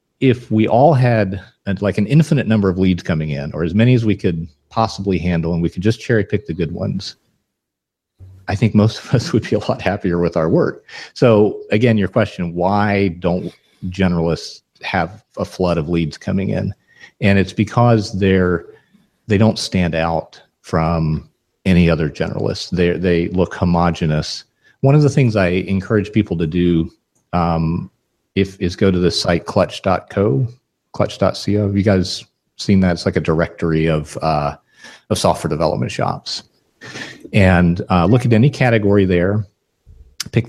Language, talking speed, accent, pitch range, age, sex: English, 170 wpm, American, 85-110 Hz, 40-59, male